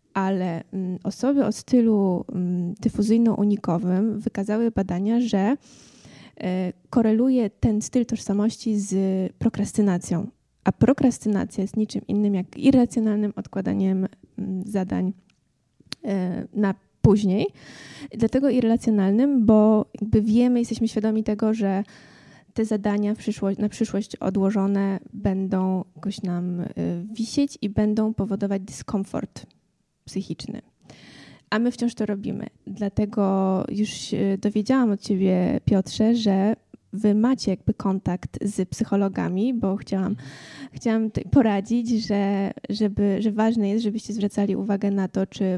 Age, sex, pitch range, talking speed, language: 20-39, female, 195-220 Hz, 105 wpm, Polish